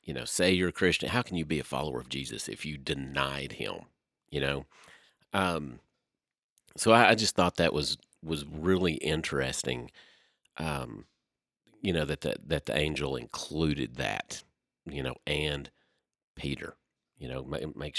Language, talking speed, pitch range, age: English, 165 wpm, 70-85 Hz, 40-59